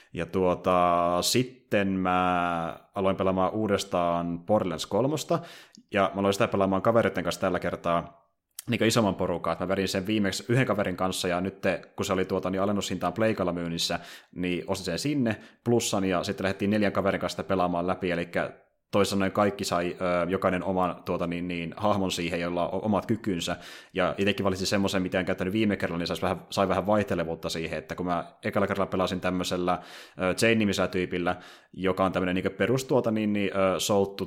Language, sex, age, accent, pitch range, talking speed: Finnish, male, 20-39, native, 90-100 Hz, 175 wpm